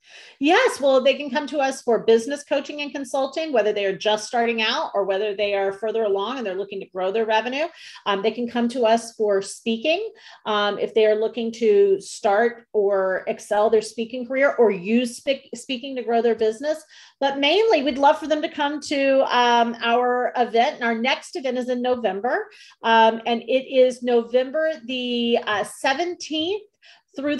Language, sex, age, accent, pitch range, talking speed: English, female, 40-59, American, 225-280 Hz, 190 wpm